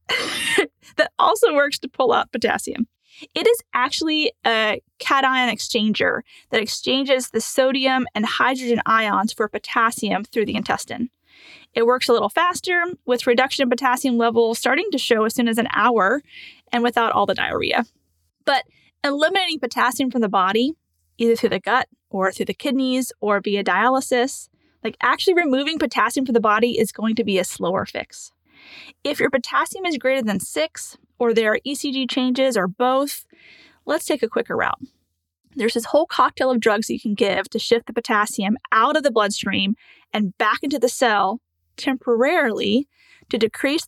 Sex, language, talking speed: female, English, 170 wpm